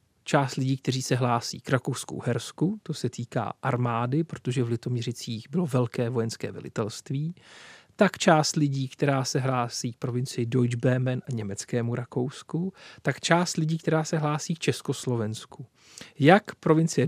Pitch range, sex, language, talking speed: 125-150 Hz, male, Czech, 145 wpm